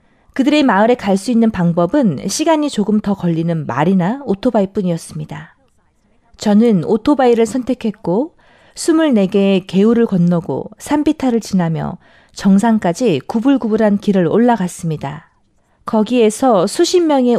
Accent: native